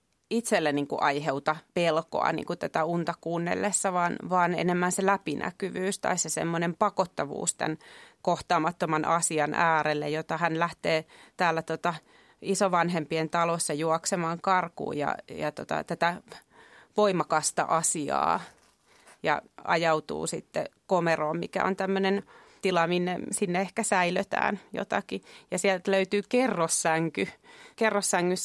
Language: Finnish